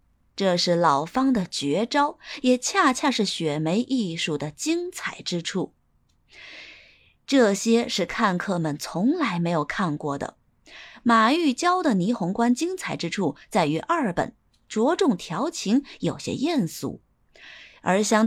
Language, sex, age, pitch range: Chinese, female, 20-39, 175-270 Hz